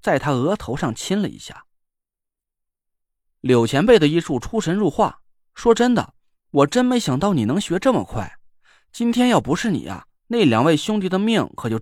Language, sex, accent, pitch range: Chinese, male, native, 140-230 Hz